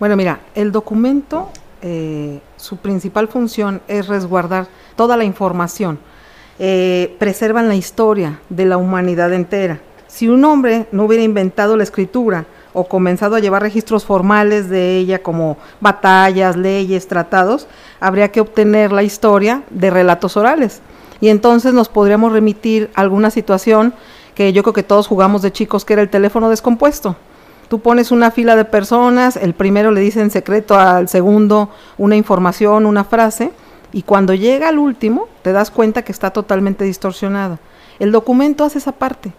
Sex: female